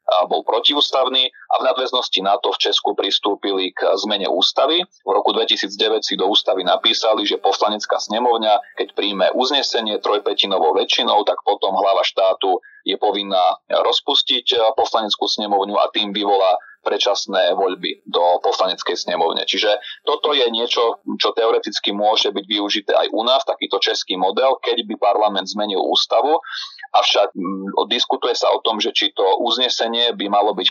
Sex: male